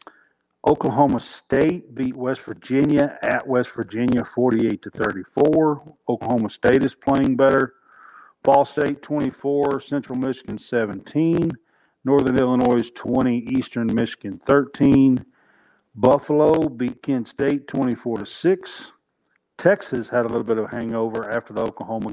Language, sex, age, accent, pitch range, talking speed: English, male, 50-69, American, 115-140 Hz, 125 wpm